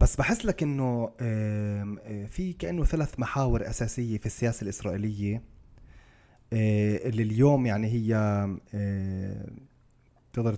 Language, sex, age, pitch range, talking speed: Arabic, male, 20-39, 100-125 Hz, 95 wpm